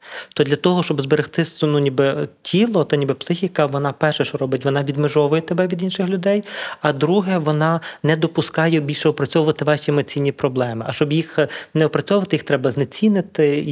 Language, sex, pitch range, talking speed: Ukrainian, male, 140-160 Hz, 170 wpm